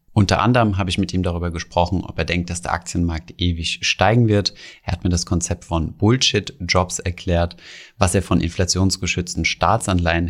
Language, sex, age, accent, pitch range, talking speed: German, male, 30-49, German, 90-115 Hz, 175 wpm